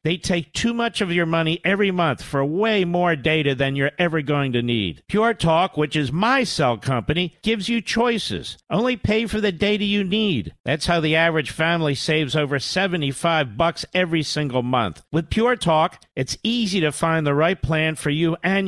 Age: 50-69